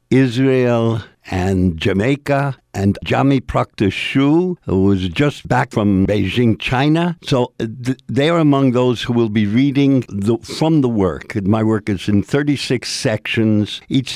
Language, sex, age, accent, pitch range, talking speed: English, male, 60-79, American, 85-120 Hz, 140 wpm